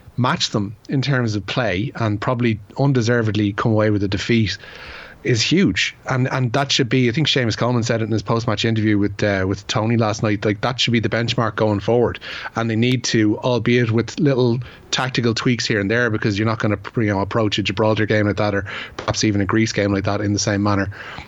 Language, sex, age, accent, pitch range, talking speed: English, male, 30-49, Irish, 105-115 Hz, 230 wpm